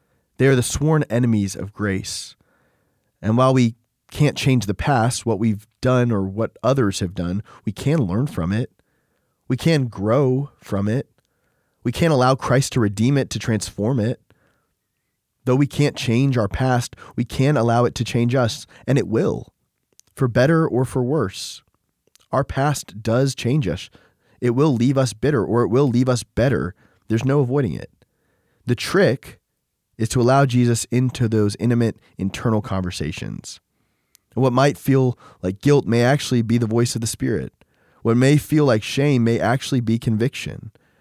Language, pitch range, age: English, 110-135 Hz, 20-39